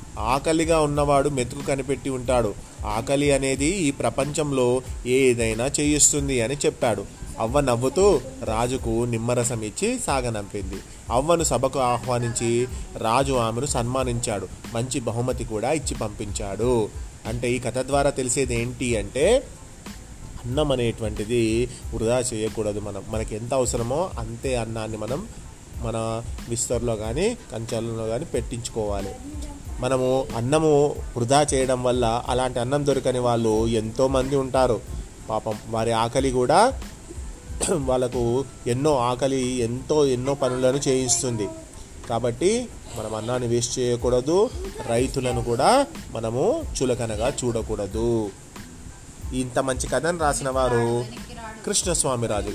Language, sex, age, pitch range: Telugu, male, 30-49, 115-135 Hz